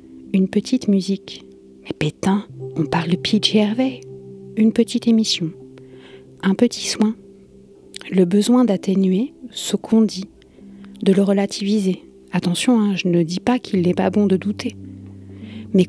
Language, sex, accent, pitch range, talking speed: French, female, French, 170-210 Hz, 145 wpm